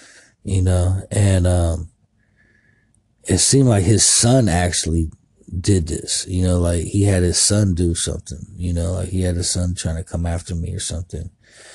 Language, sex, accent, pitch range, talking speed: English, male, American, 90-115 Hz, 180 wpm